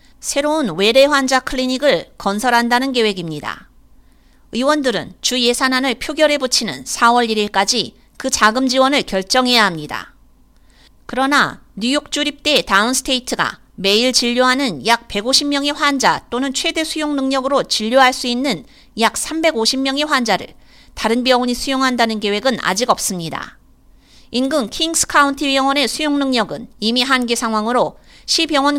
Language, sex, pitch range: Korean, female, 225-275 Hz